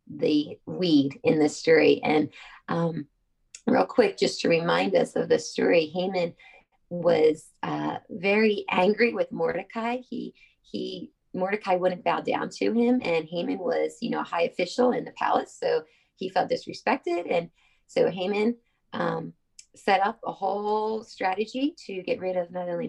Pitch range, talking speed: 180-250 Hz, 160 wpm